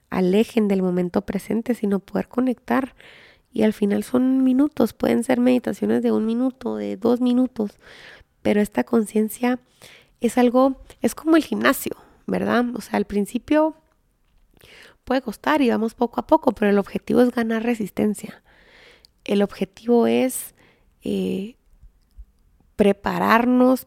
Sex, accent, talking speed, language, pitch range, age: female, Mexican, 135 wpm, Spanish, 195-240 Hz, 30-49